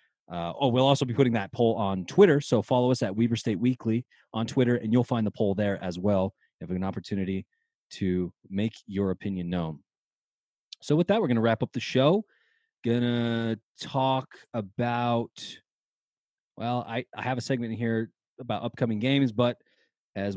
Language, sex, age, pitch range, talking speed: English, male, 30-49, 105-140 Hz, 185 wpm